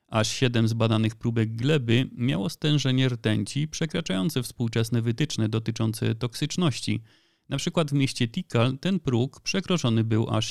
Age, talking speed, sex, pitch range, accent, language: 30-49, 135 wpm, male, 110-135 Hz, native, Polish